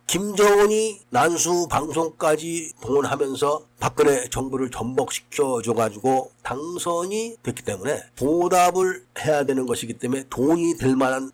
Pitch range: 130-180 Hz